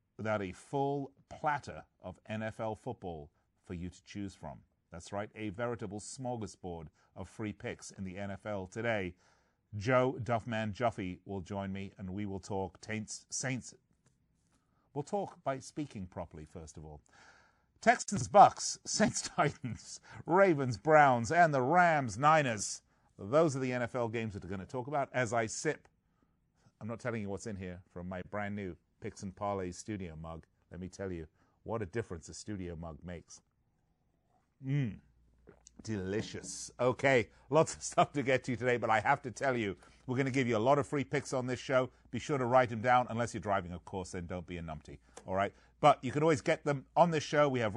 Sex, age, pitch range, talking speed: male, 40-59, 95-130 Hz, 185 wpm